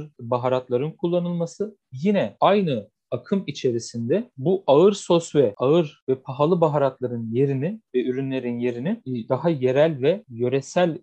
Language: Turkish